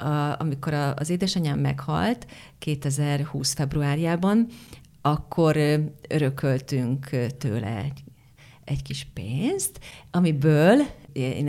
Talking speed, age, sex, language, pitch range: 75 wpm, 40-59, female, Hungarian, 140-170 Hz